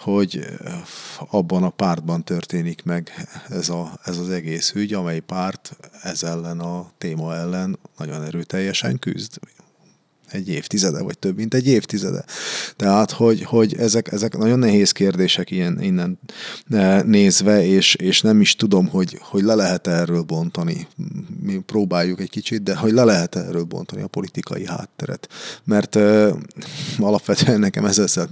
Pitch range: 85-110 Hz